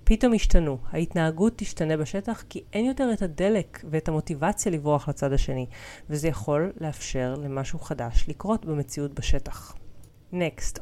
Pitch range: 145-195 Hz